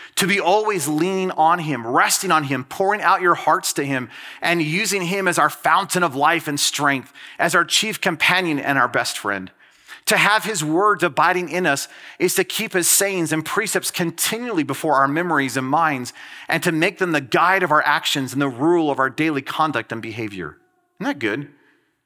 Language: English